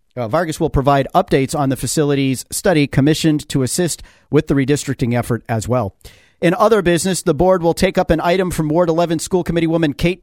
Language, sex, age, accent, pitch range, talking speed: English, male, 40-59, American, 135-170 Hz, 205 wpm